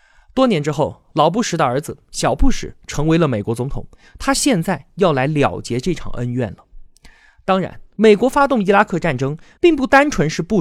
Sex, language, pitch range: male, Chinese, 130-205 Hz